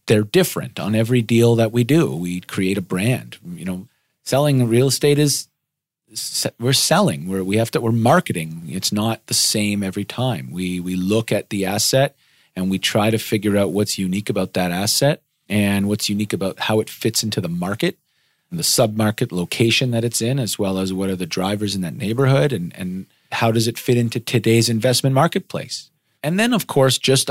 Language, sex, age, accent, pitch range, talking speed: English, male, 40-59, American, 100-130 Hz, 200 wpm